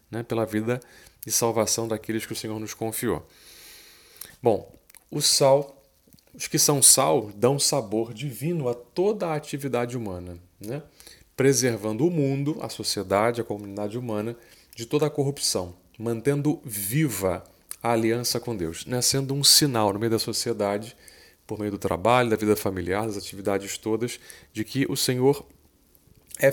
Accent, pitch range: Brazilian, 105-135 Hz